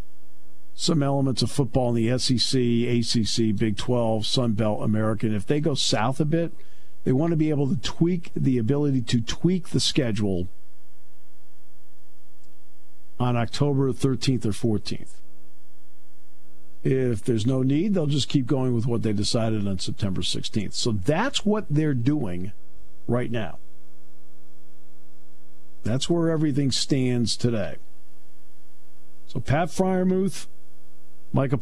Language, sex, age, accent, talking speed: English, male, 50-69, American, 130 wpm